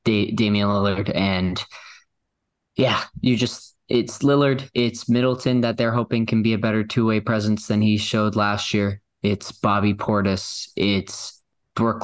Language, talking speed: English, 150 wpm